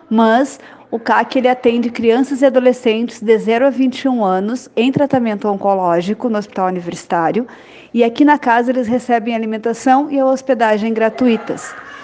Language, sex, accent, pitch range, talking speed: Portuguese, female, Brazilian, 225-265 Hz, 145 wpm